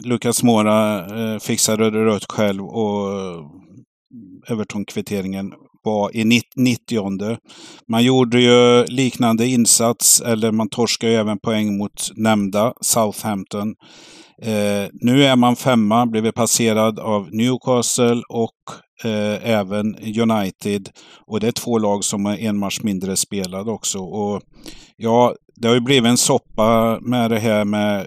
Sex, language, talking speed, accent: male, Swedish, 140 wpm, native